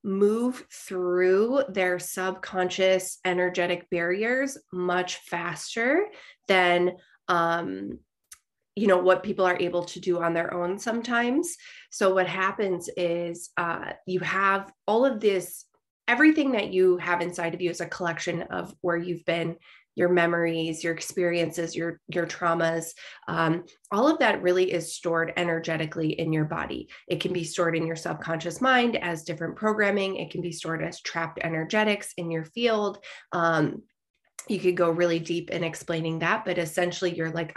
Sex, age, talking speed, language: female, 20-39, 155 wpm, English